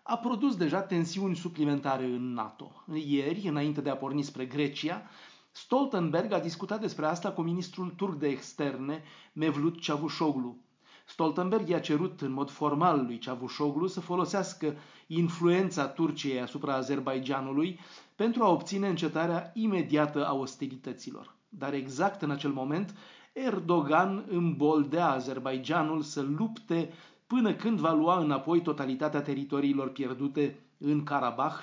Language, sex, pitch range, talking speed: Romanian, male, 140-185 Hz, 125 wpm